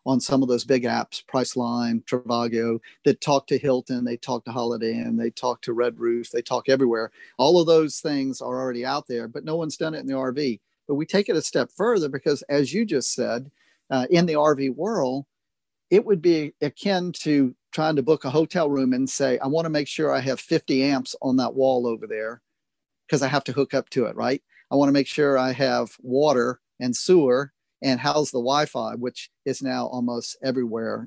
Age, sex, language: 50-69, male, English